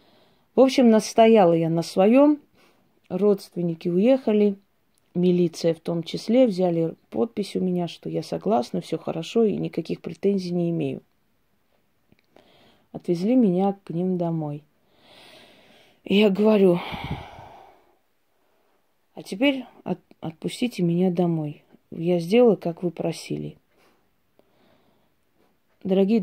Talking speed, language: 100 wpm, Russian